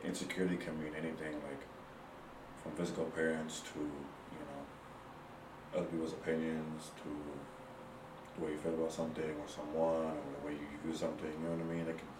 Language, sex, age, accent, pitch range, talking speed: English, male, 30-49, American, 80-85 Hz, 175 wpm